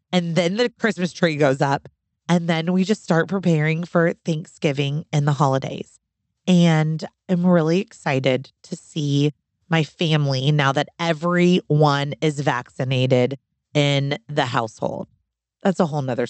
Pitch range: 140-180 Hz